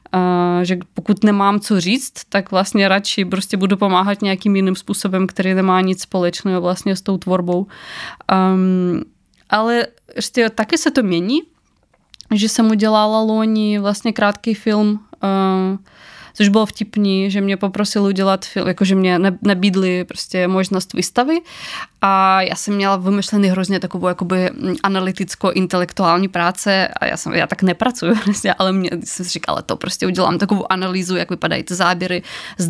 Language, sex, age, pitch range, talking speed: Czech, female, 20-39, 180-205 Hz, 150 wpm